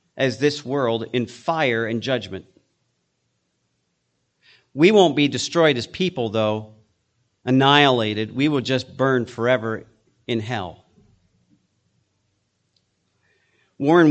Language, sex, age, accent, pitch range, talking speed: English, male, 40-59, American, 110-140 Hz, 100 wpm